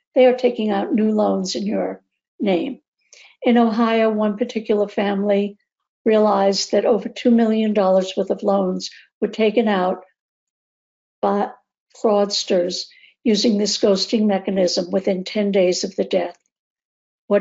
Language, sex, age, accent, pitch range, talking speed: English, female, 60-79, American, 195-235 Hz, 130 wpm